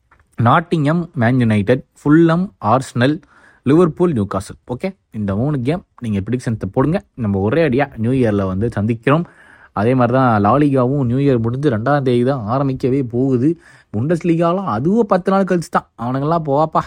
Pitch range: 110-160 Hz